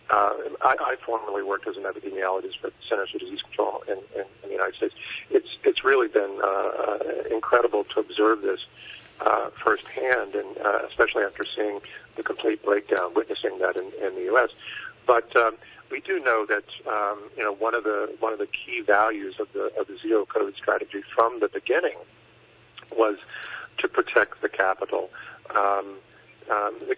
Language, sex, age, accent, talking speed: English, male, 50-69, American, 170 wpm